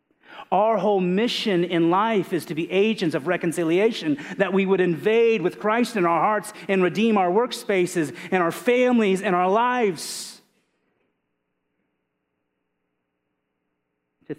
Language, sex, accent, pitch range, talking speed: English, male, American, 135-205 Hz, 130 wpm